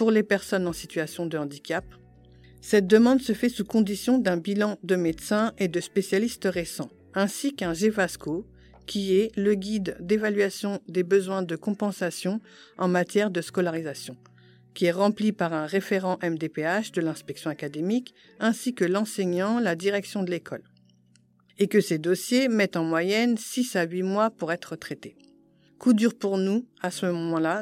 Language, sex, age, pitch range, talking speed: French, female, 50-69, 170-215 Hz, 165 wpm